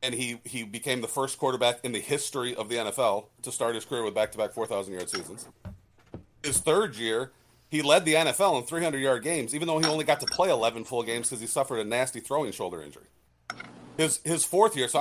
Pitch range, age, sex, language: 110-140 Hz, 40-59, male, English